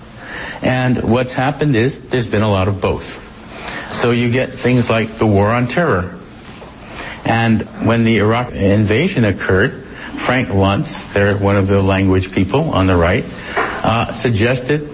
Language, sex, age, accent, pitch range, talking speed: English, male, 60-79, American, 105-125 Hz, 150 wpm